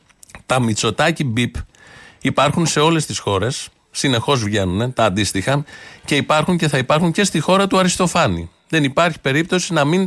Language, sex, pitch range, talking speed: Greek, male, 115-155 Hz, 160 wpm